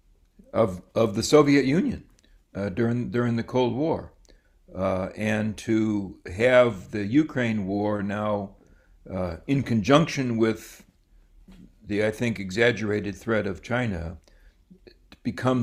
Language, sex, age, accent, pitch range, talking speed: German, male, 60-79, American, 95-120 Hz, 120 wpm